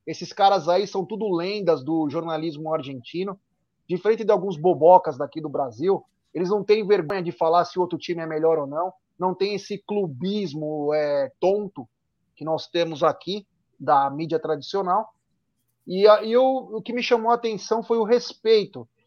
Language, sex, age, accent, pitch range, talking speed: Portuguese, male, 30-49, Brazilian, 165-215 Hz, 170 wpm